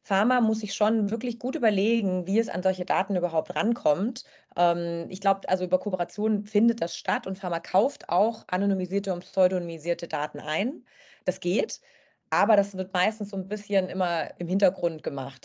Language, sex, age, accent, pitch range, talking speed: German, female, 30-49, German, 170-210 Hz, 170 wpm